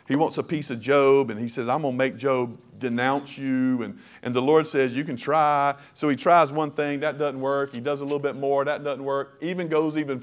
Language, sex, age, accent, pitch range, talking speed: English, male, 40-59, American, 140-175 Hz, 260 wpm